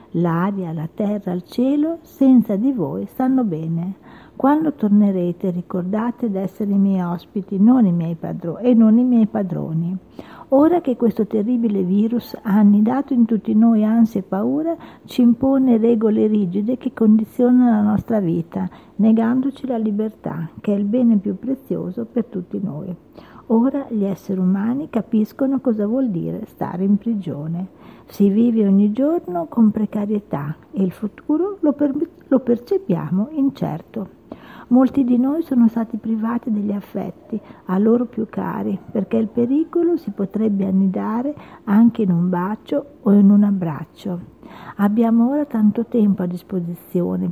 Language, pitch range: Italian, 195-245 Hz